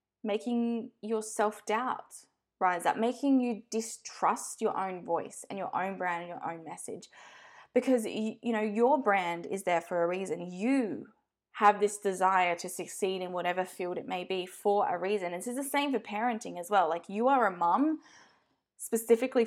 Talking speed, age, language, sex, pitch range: 180 wpm, 20-39, English, female, 190-240 Hz